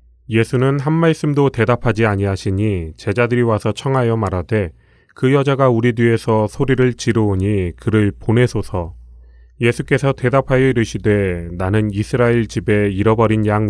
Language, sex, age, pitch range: Korean, male, 30-49, 100-125 Hz